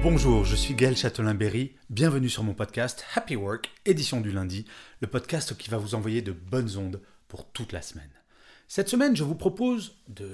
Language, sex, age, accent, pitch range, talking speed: French, male, 40-59, French, 105-175 Hz, 190 wpm